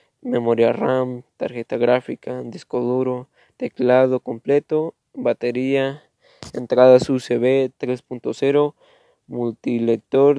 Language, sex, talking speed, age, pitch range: Spanish, male, 75 wpm, 20-39, 120-135 Hz